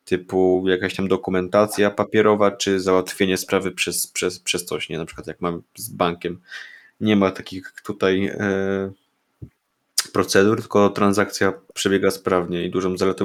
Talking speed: 135 wpm